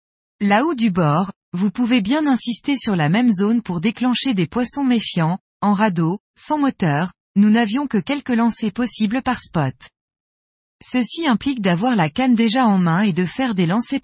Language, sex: French, female